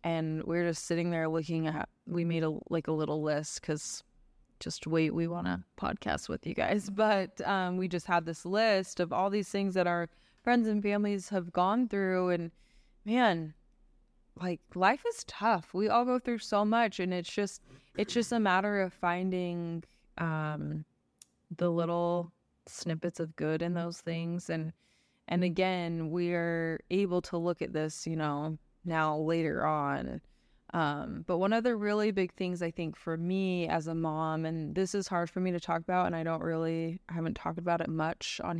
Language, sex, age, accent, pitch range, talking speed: English, female, 20-39, American, 160-185 Hz, 190 wpm